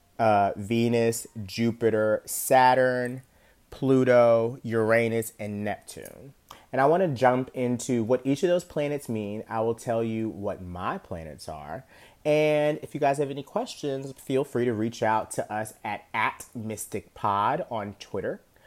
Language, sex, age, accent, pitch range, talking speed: English, male, 30-49, American, 110-140 Hz, 150 wpm